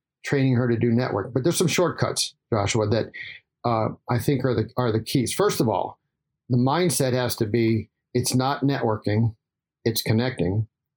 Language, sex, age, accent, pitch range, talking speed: English, male, 50-69, American, 115-135 Hz, 175 wpm